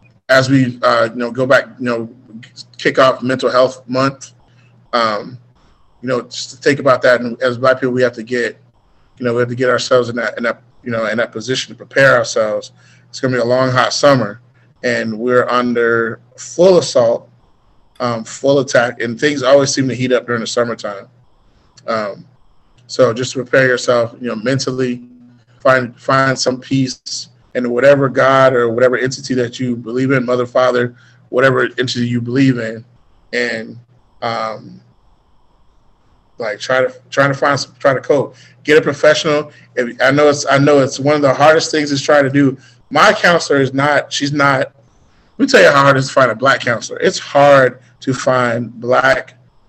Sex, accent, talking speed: male, American, 190 wpm